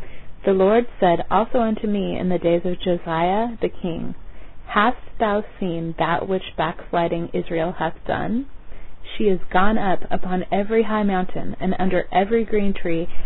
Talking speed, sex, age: 160 wpm, female, 30-49